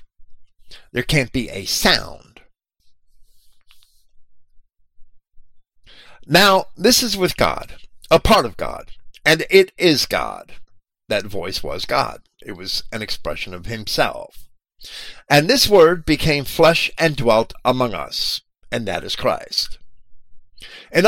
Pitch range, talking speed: 95-160 Hz, 120 wpm